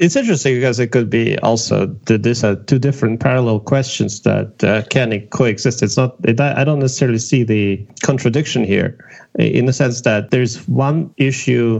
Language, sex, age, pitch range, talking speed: English, male, 30-49, 105-135 Hz, 190 wpm